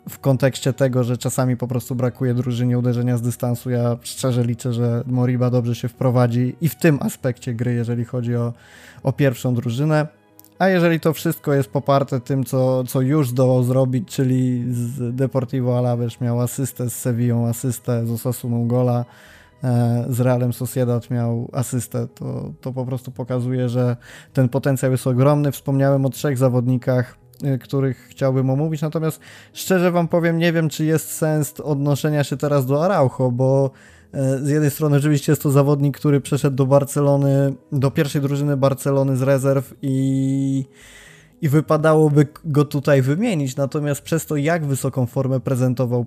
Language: Polish